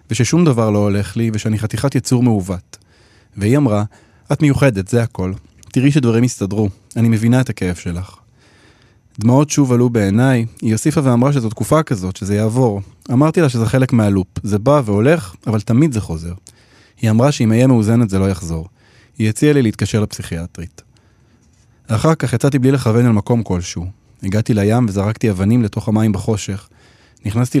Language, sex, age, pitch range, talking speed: Hebrew, male, 20-39, 105-125 Hz, 165 wpm